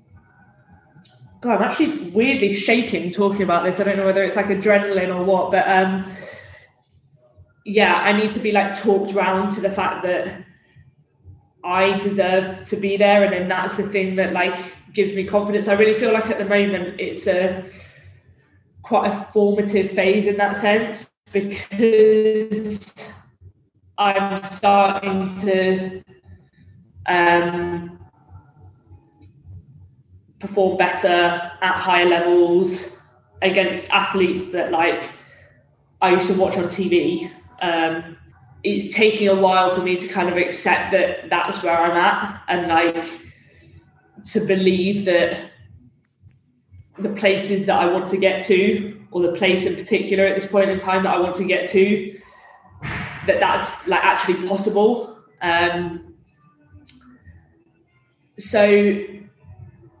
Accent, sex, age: British, female, 20-39